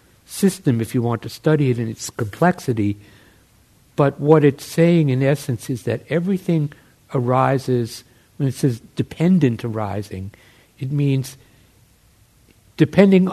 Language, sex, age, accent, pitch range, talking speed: English, male, 60-79, American, 105-130 Hz, 125 wpm